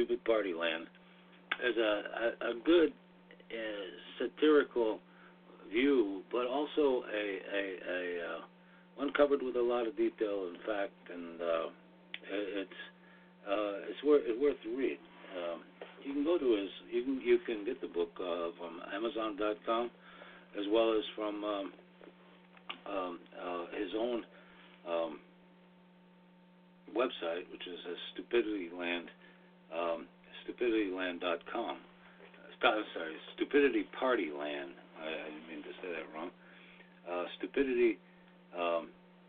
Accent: American